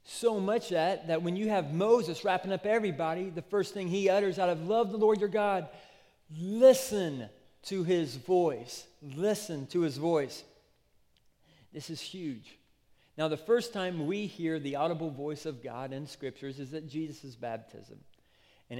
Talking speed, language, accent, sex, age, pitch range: 165 wpm, English, American, male, 40-59, 150-190 Hz